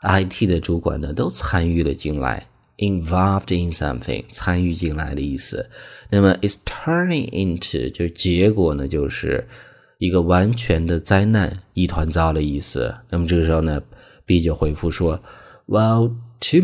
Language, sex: Chinese, male